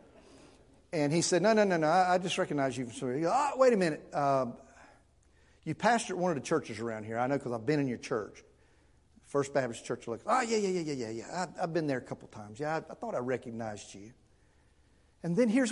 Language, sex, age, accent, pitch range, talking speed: English, male, 50-69, American, 95-150 Hz, 235 wpm